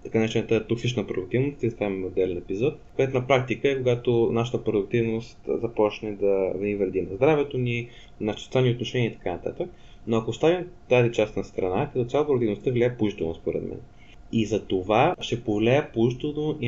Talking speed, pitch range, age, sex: 185 wpm, 110-130 Hz, 20-39, male